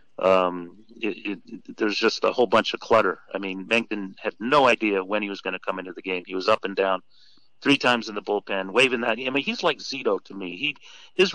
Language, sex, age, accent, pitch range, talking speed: English, male, 40-59, American, 95-115 Hz, 245 wpm